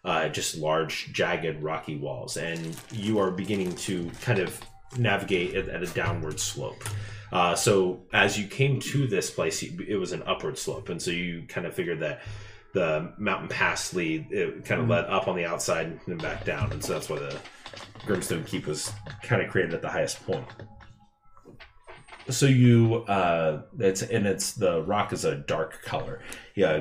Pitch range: 85-115 Hz